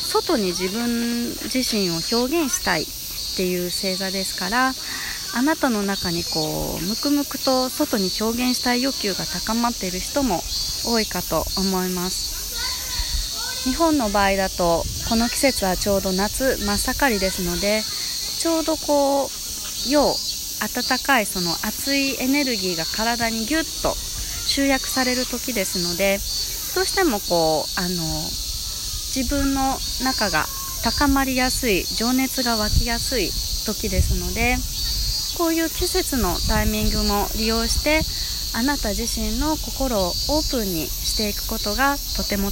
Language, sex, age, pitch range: Japanese, female, 20-39, 185-270 Hz